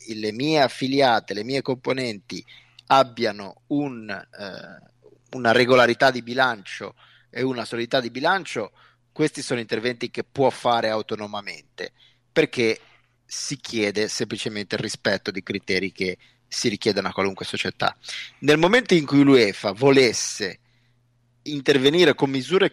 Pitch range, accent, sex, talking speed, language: 115-135 Hz, native, male, 125 wpm, Italian